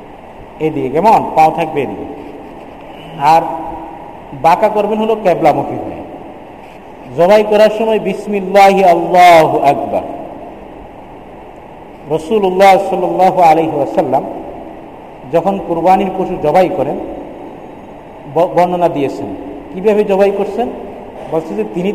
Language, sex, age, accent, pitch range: Bengali, male, 50-69, native, 175-225 Hz